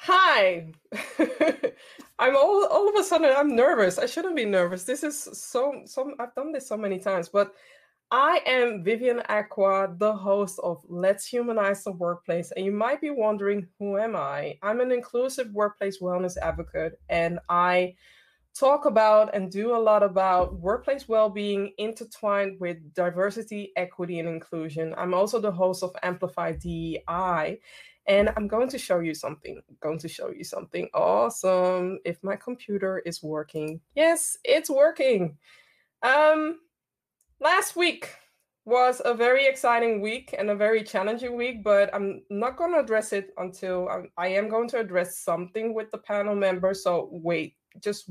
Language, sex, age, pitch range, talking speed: English, female, 20-39, 180-245 Hz, 160 wpm